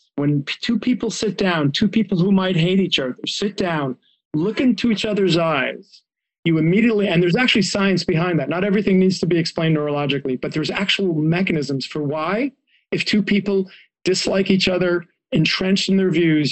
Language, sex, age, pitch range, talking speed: English, male, 40-59, 145-185 Hz, 180 wpm